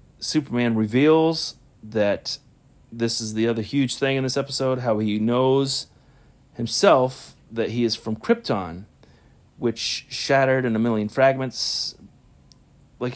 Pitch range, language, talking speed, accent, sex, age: 110-135 Hz, English, 130 wpm, American, male, 30-49